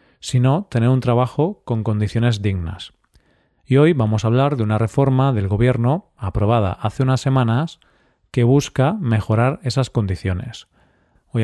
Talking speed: 140 wpm